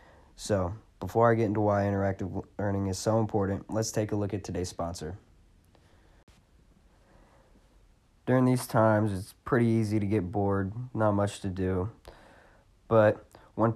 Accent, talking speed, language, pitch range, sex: American, 145 wpm, English, 90-110 Hz, male